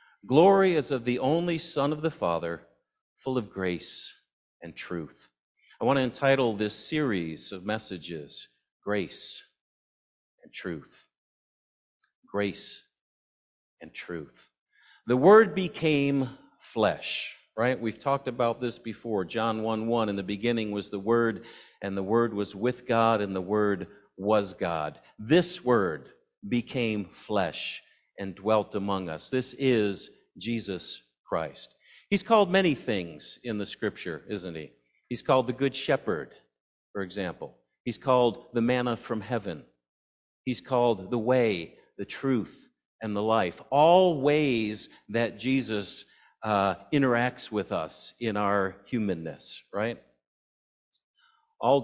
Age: 50-69